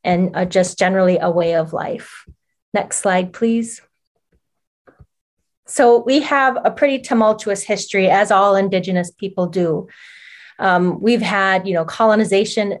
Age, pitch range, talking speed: 30-49, 180-220 Hz, 130 wpm